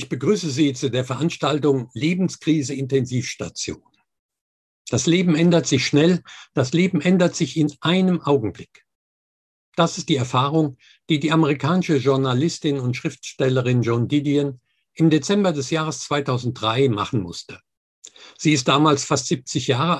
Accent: German